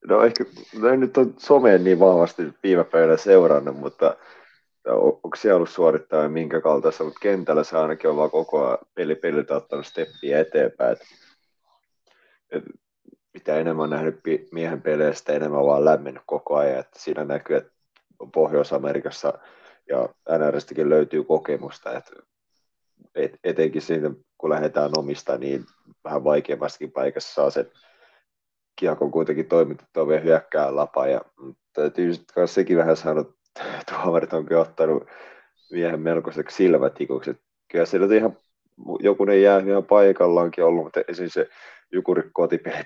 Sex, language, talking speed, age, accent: male, Finnish, 140 wpm, 30-49, native